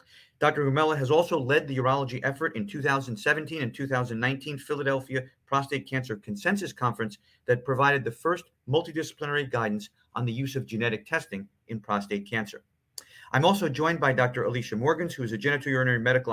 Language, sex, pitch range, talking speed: English, male, 110-145 Hz, 160 wpm